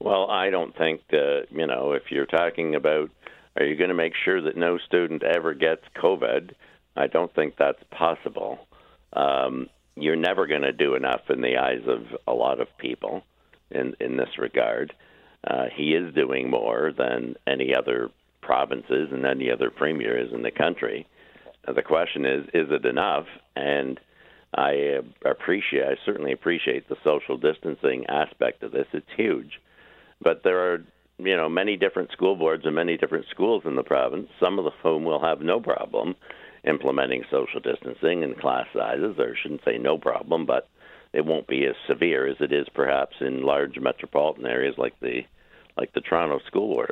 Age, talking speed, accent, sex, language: 60-79, 180 wpm, American, male, English